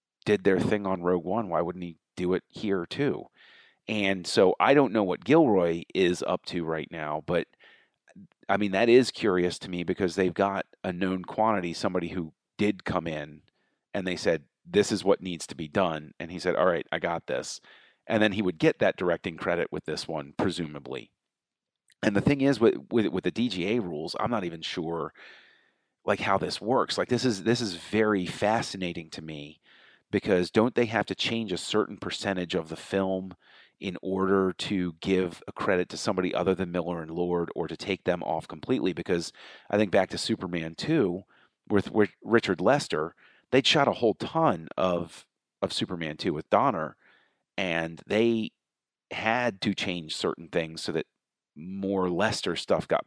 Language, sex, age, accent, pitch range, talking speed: English, male, 40-59, American, 85-105 Hz, 190 wpm